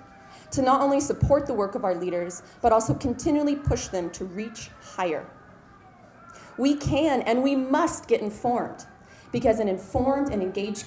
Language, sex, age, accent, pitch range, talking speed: English, female, 30-49, American, 195-260 Hz, 160 wpm